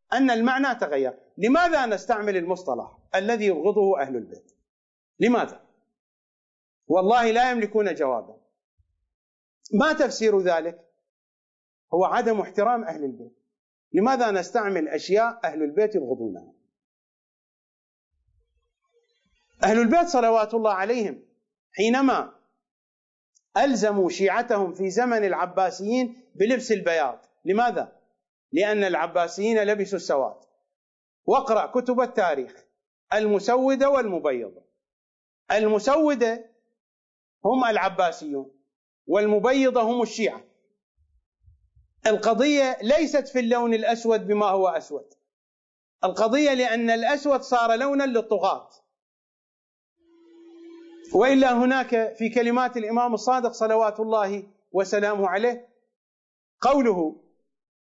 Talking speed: 85 wpm